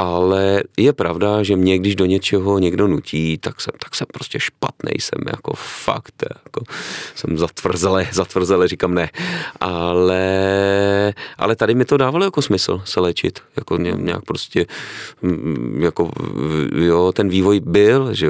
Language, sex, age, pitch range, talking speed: Czech, male, 30-49, 85-100 Hz, 145 wpm